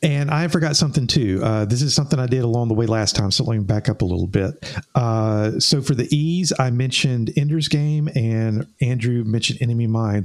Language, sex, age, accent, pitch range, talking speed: English, male, 50-69, American, 110-150 Hz, 220 wpm